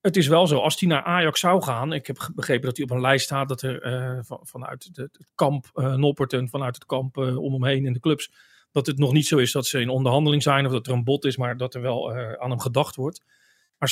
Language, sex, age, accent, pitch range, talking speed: Dutch, male, 40-59, Dutch, 130-155 Hz, 280 wpm